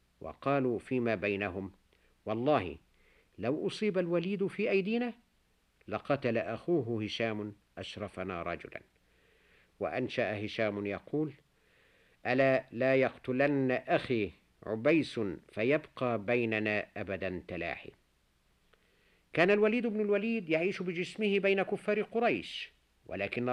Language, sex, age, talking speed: Arabic, male, 50-69, 90 wpm